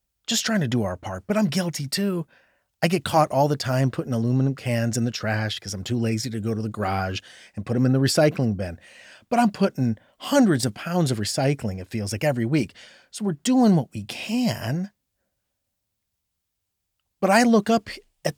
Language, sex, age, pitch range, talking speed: English, male, 40-59, 105-175 Hz, 200 wpm